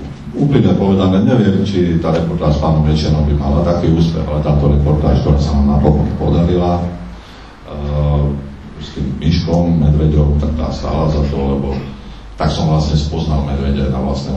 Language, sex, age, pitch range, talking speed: Slovak, male, 40-59, 70-80 Hz, 160 wpm